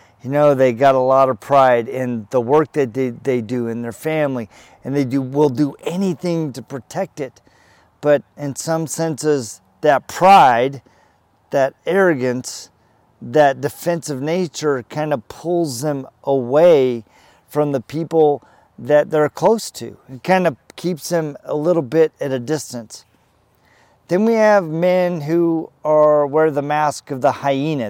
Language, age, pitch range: English, 40-59, 135-170 Hz